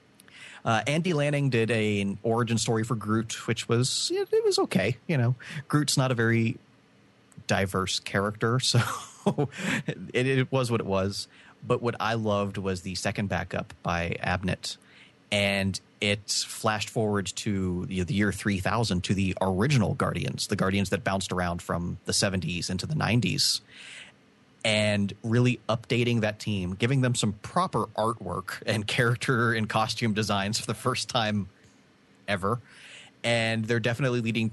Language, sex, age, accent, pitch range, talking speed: English, male, 30-49, American, 95-120 Hz, 155 wpm